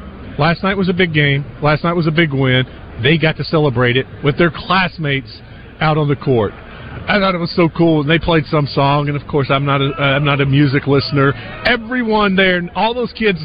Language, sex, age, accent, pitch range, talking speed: English, male, 40-59, American, 130-190 Hz, 215 wpm